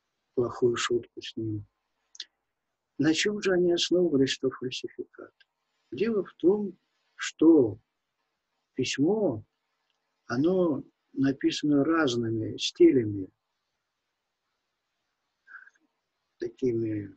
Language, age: Russian, 50-69